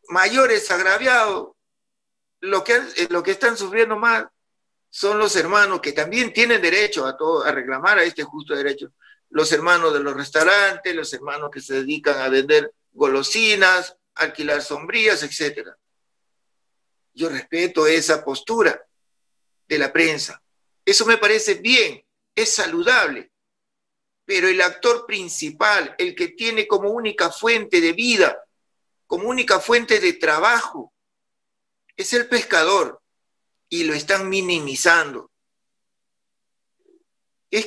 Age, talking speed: 50-69, 125 wpm